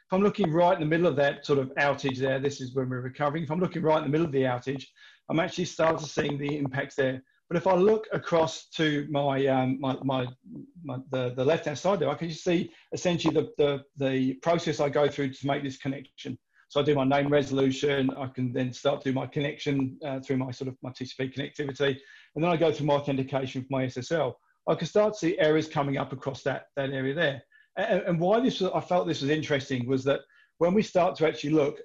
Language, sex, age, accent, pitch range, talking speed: English, male, 40-59, British, 135-160 Hz, 245 wpm